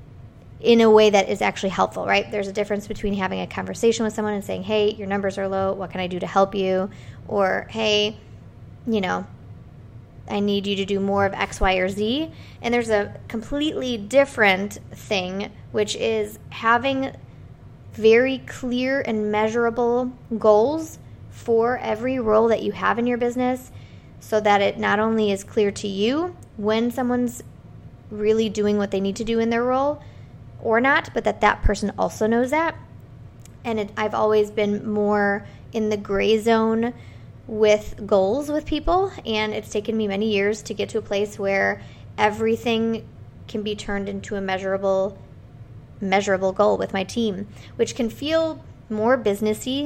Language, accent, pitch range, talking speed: English, American, 195-230 Hz, 170 wpm